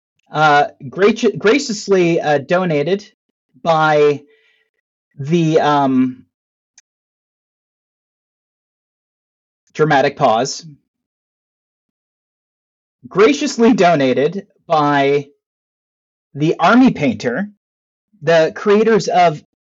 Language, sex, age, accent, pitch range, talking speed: English, male, 30-49, American, 150-220 Hz, 60 wpm